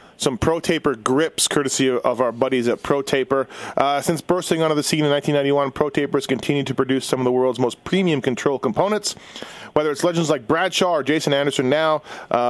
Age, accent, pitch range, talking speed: 30-49, American, 125-150 Hz, 205 wpm